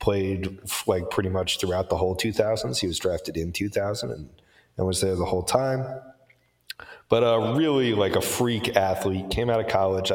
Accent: American